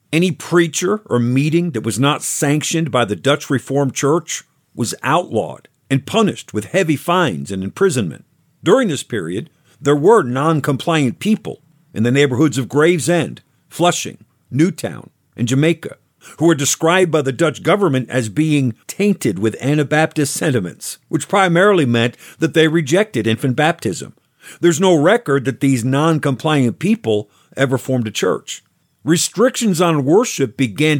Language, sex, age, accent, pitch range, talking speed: English, male, 50-69, American, 125-165 Hz, 145 wpm